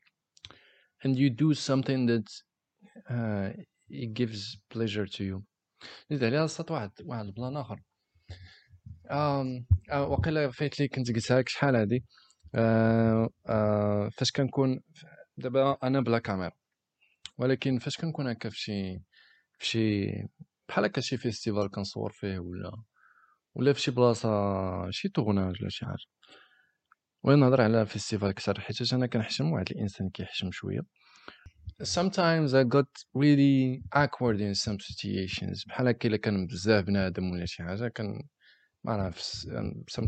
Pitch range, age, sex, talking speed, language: 105-140 Hz, 20-39, male, 35 wpm, English